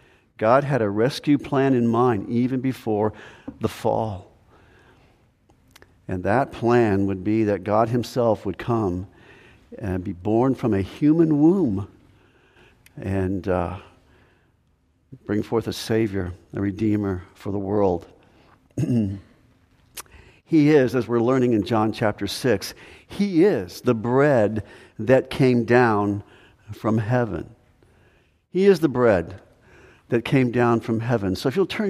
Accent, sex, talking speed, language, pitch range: American, male, 130 wpm, English, 100-125 Hz